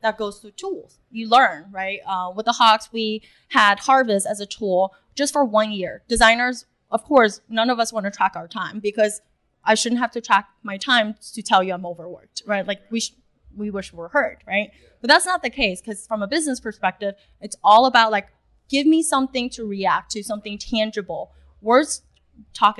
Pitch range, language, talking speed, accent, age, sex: 205-245 Hz, English, 210 wpm, American, 10-29, female